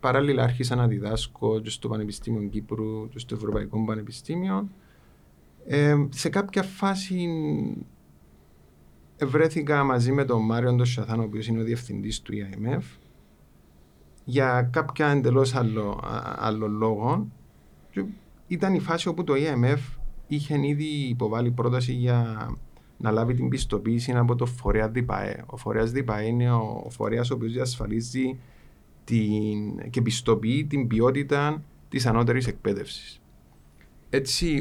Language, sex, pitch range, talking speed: Greek, male, 105-130 Hz, 120 wpm